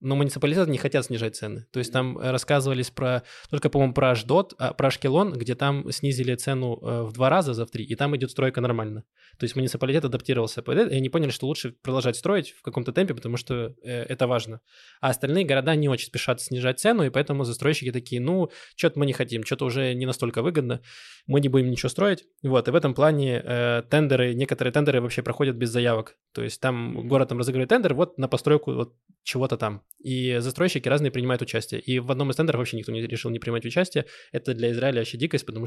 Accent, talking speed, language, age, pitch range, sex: native, 210 wpm, Russian, 20-39, 120-145 Hz, male